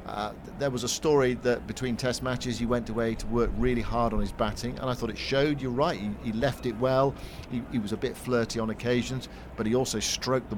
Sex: male